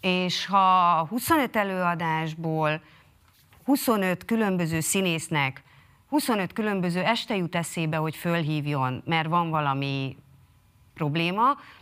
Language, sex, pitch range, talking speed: Hungarian, female, 165-215 Hz, 90 wpm